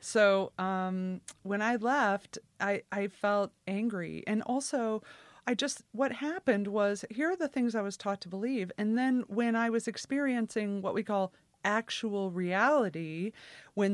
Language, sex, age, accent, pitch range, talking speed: English, female, 30-49, American, 180-235 Hz, 160 wpm